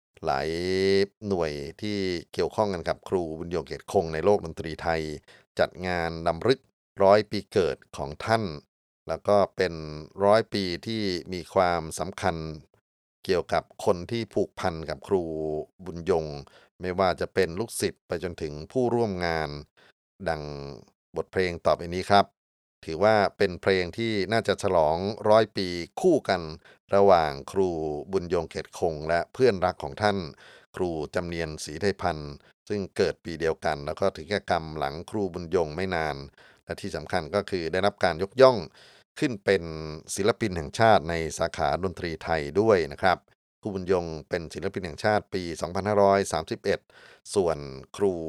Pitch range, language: 80-100 Hz, Thai